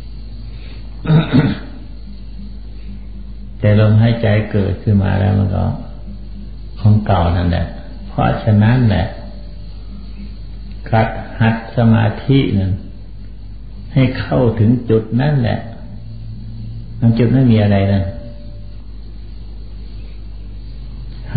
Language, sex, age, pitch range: Thai, male, 60-79, 100-115 Hz